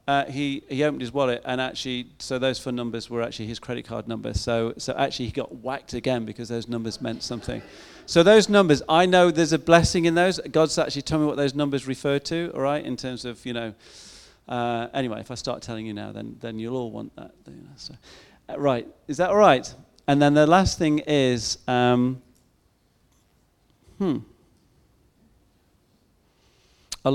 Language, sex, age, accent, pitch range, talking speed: English, male, 40-59, British, 115-140 Hz, 195 wpm